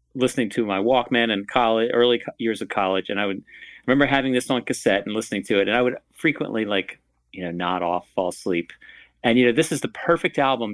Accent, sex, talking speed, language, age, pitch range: American, male, 235 wpm, English, 40-59, 90-120 Hz